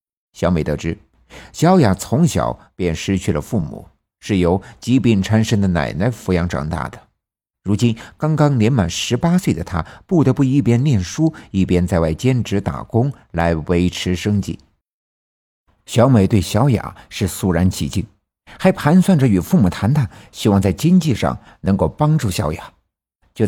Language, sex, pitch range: Chinese, male, 90-125 Hz